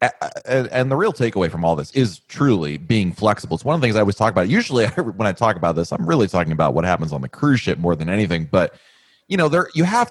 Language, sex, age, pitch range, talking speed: English, male, 30-49, 95-140 Hz, 265 wpm